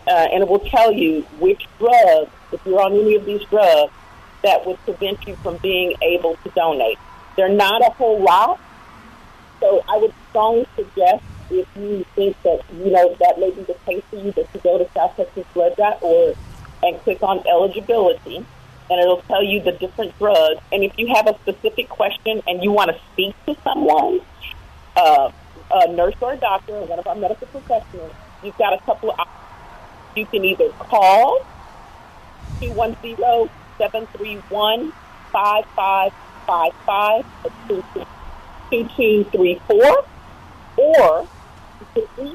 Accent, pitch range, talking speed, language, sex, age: American, 180-255 Hz, 160 wpm, English, female, 40-59